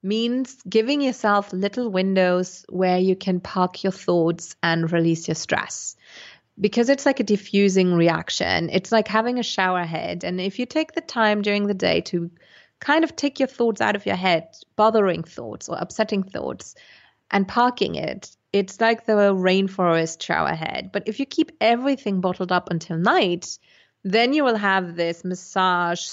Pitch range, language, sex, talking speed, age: 170-215 Hz, English, female, 170 wpm, 30-49